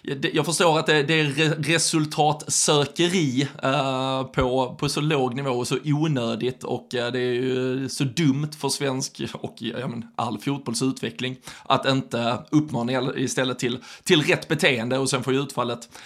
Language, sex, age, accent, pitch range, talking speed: Swedish, male, 20-39, native, 125-150 Hz, 130 wpm